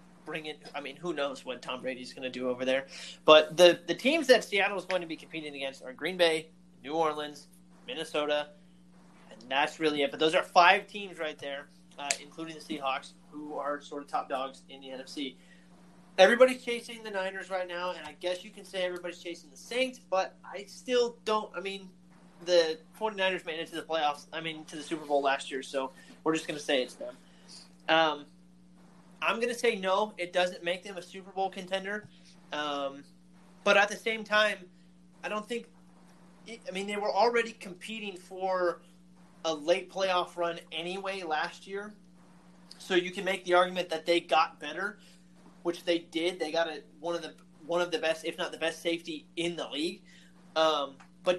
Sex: male